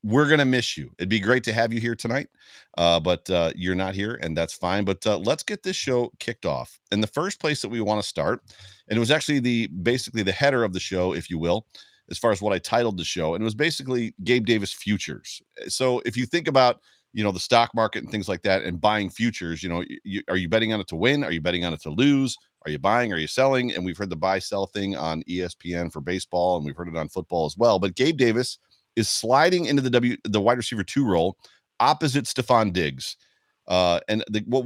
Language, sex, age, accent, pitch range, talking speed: English, male, 40-59, American, 90-125 Hz, 255 wpm